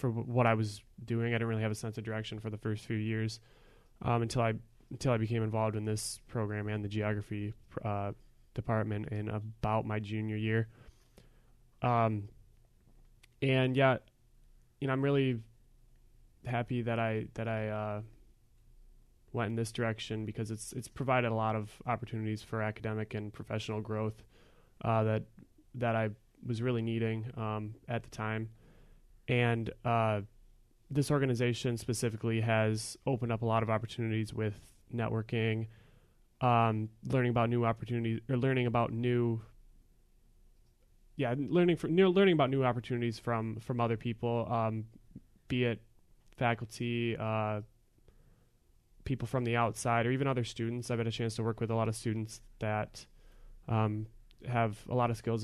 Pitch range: 110-120 Hz